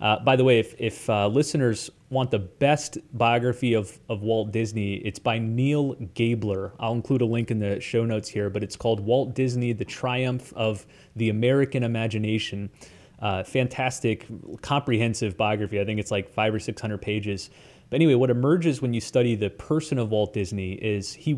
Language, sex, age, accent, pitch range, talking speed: English, male, 30-49, American, 110-135 Hz, 185 wpm